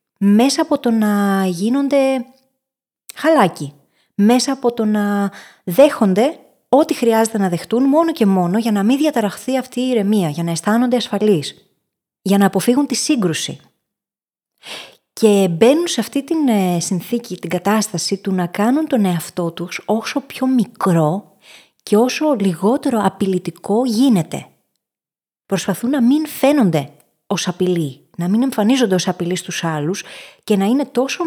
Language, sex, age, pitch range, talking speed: Greek, female, 20-39, 185-255 Hz, 140 wpm